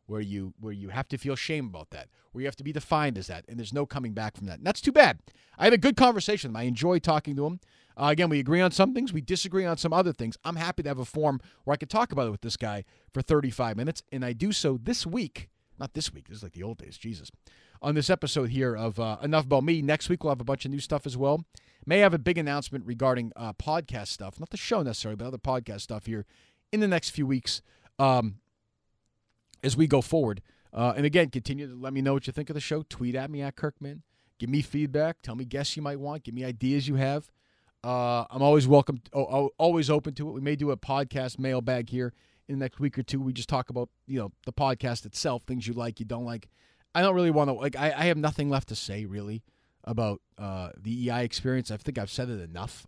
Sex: male